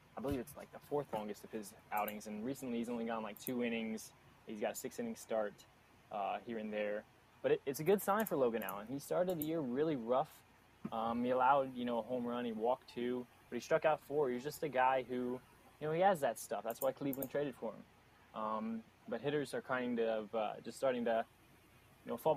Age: 20-39